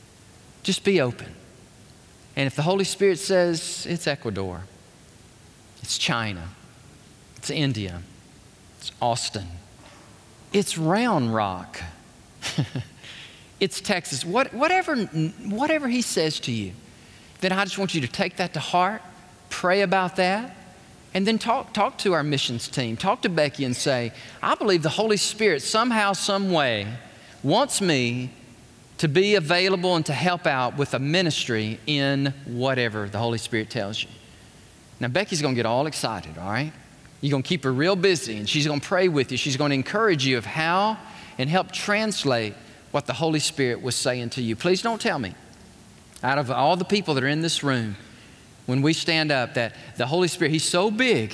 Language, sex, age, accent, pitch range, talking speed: English, male, 40-59, American, 120-185 Hz, 165 wpm